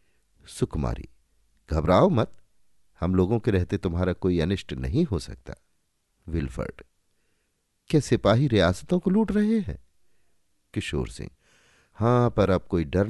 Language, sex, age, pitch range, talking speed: Hindi, male, 50-69, 80-115 Hz, 130 wpm